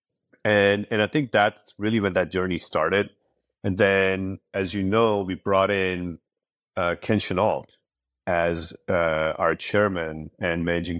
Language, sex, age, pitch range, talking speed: English, male, 30-49, 85-105 Hz, 145 wpm